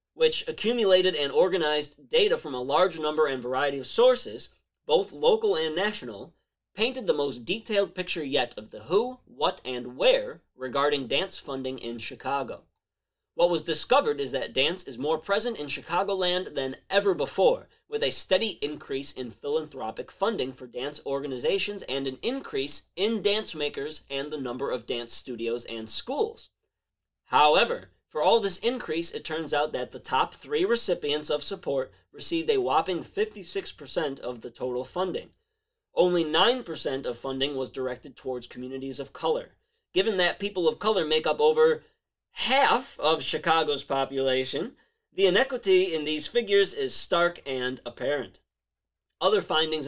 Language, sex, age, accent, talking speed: English, male, 20-39, American, 155 wpm